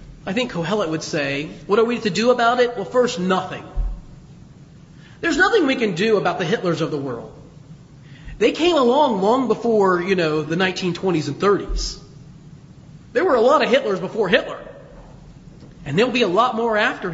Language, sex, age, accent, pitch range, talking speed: English, male, 40-59, American, 155-245 Hz, 185 wpm